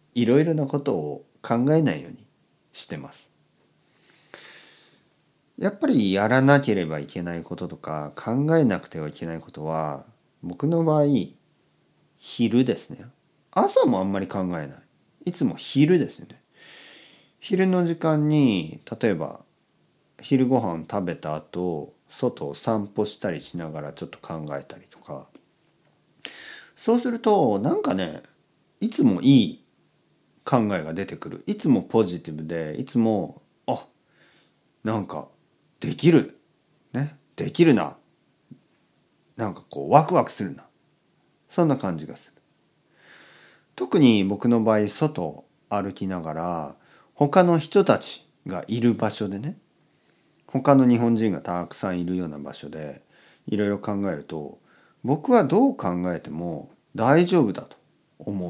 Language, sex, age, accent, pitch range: Japanese, male, 40-59, native, 85-140 Hz